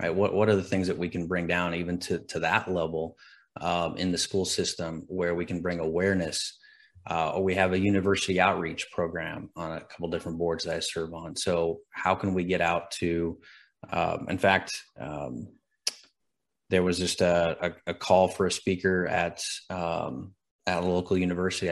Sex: male